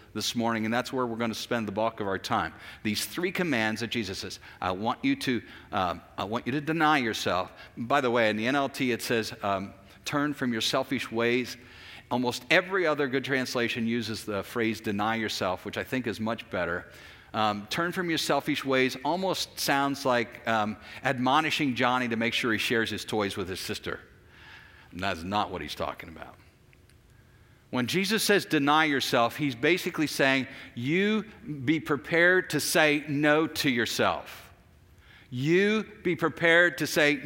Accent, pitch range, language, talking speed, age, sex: American, 115-160 Hz, English, 180 wpm, 50-69, male